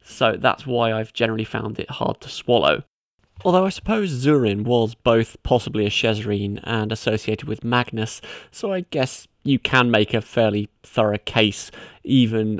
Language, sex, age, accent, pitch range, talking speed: English, male, 20-39, British, 110-125 Hz, 160 wpm